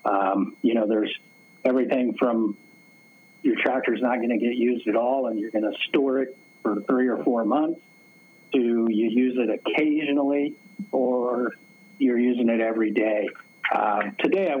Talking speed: 175 wpm